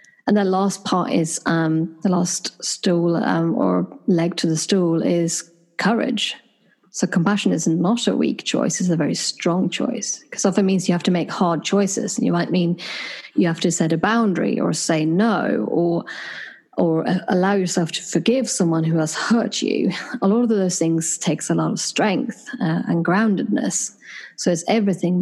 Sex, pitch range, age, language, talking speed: female, 170-205 Hz, 30-49, English, 185 wpm